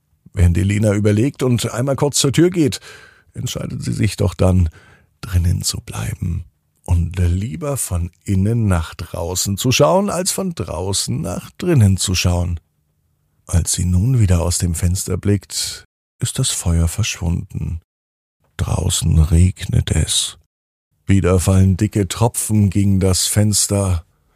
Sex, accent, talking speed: male, German, 135 wpm